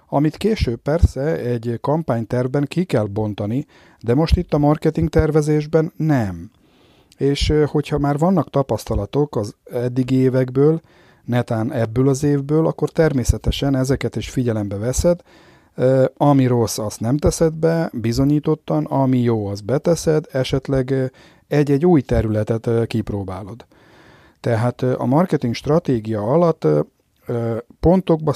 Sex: male